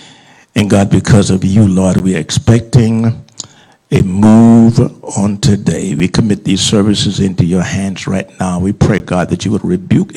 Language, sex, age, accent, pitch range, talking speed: English, male, 60-79, American, 95-115 Hz, 170 wpm